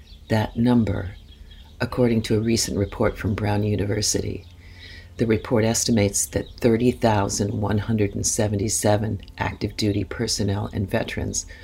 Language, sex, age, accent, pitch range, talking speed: English, female, 50-69, American, 95-115 Hz, 105 wpm